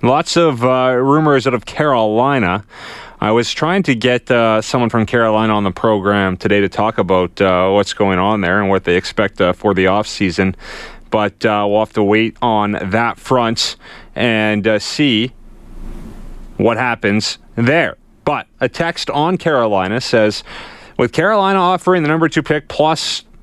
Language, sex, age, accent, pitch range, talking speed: English, male, 30-49, American, 105-125 Hz, 170 wpm